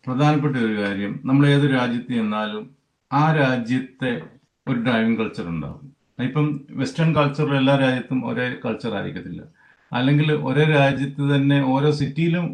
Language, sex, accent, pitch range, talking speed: Malayalam, male, native, 120-150 Hz, 130 wpm